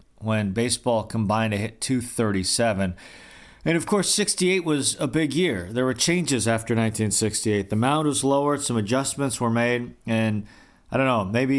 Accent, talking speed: American, 170 wpm